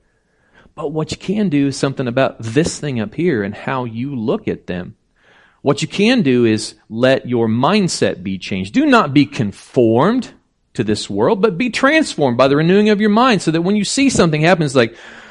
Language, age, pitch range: English, 40-59, 105-150 Hz